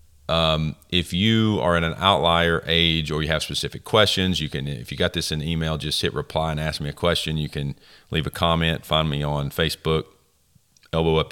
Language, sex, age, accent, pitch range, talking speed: English, male, 40-59, American, 75-95 Hz, 210 wpm